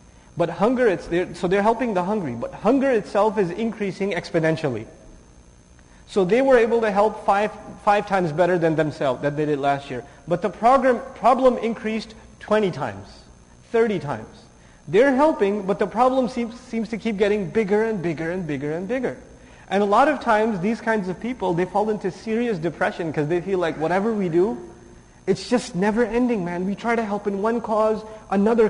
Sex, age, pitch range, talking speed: male, 30-49, 170-230 Hz, 190 wpm